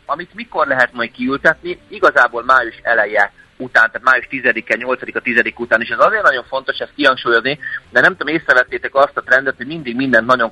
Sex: male